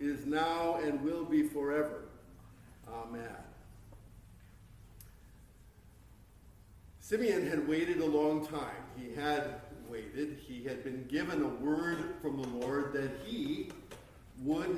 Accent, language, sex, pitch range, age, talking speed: American, English, male, 125-155 Hz, 50-69, 115 wpm